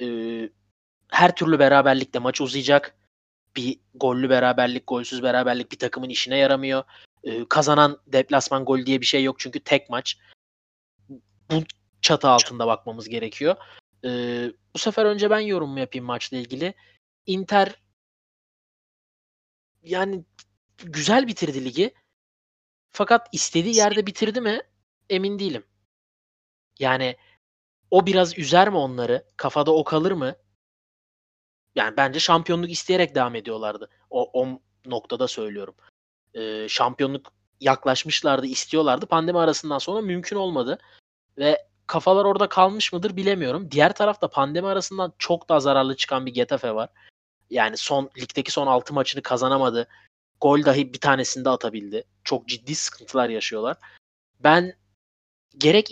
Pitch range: 120-175 Hz